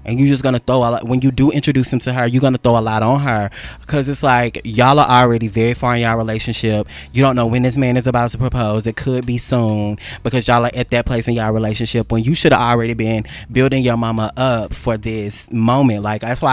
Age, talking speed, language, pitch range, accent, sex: 20-39, 260 wpm, English, 110-135 Hz, American, male